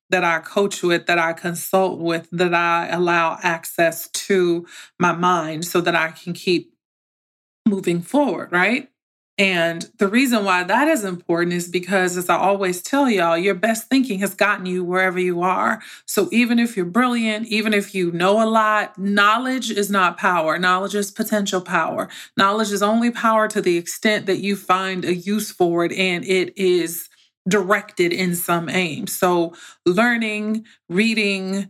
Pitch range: 175-210 Hz